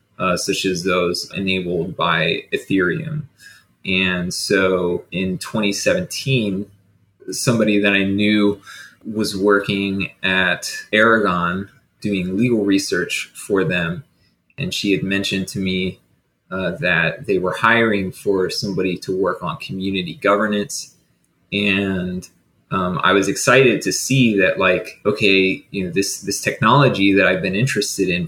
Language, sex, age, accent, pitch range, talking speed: English, male, 20-39, American, 95-110 Hz, 130 wpm